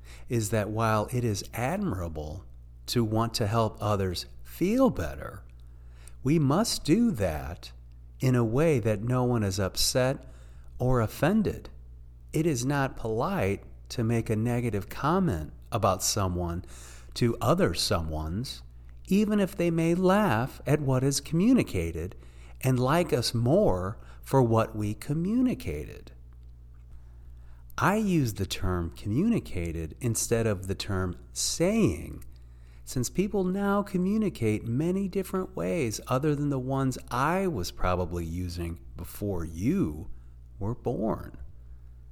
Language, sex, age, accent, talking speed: English, male, 40-59, American, 125 wpm